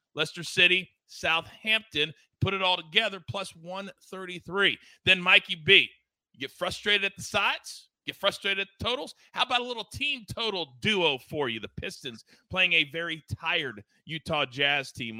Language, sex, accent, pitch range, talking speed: English, male, American, 145-185 Hz, 160 wpm